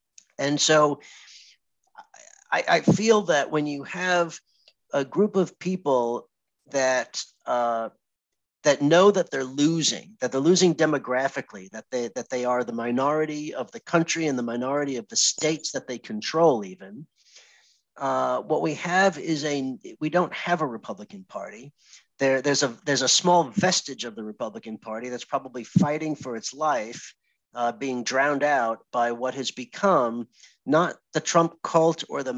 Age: 40-59